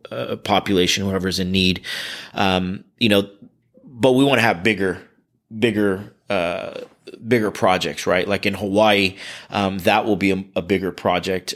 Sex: male